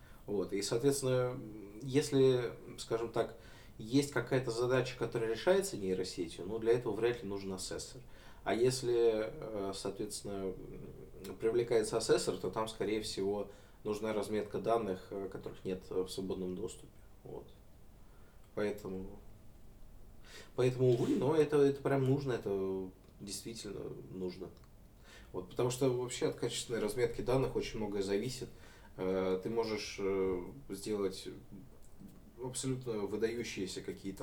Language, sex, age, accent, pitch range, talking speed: Russian, male, 20-39, native, 95-115 Hz, 110 wpm